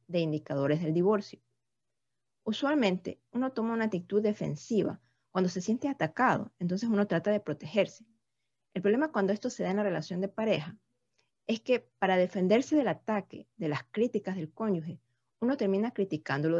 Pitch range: 160-215 Hz